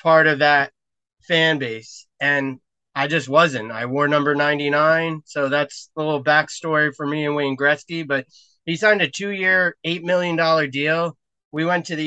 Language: English